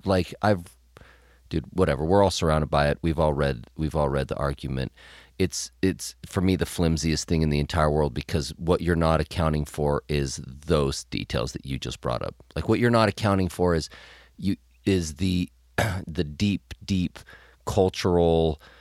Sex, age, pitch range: male, 30-49, 75-100 Hz